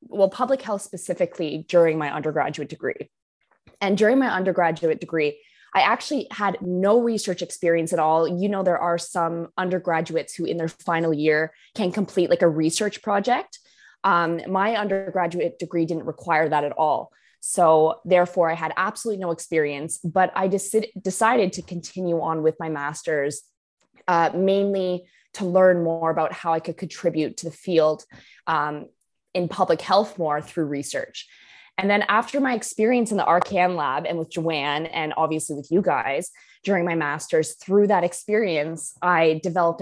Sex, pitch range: female, 160-195 Hz